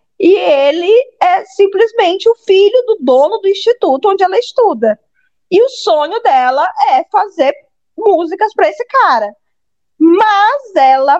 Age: 20-39